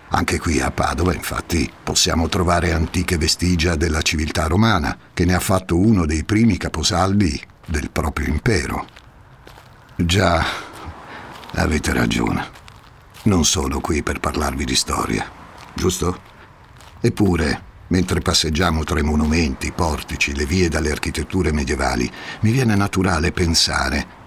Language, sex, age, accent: Italian, male, 60-79, native